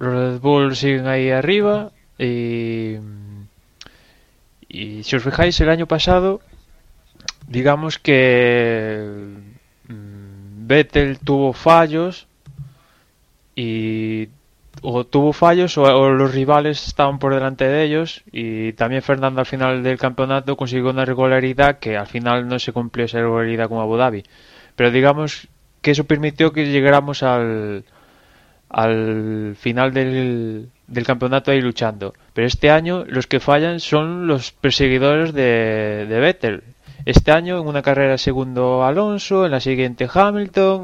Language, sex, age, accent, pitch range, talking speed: Spanish, male, 20-39, Spanish, 120-145 Hz, 135 wpm